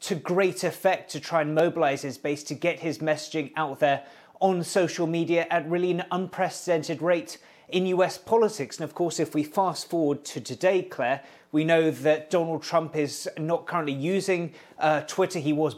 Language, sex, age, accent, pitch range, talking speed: English, male, 30-49, British, 150-180 Hz, 185 wpm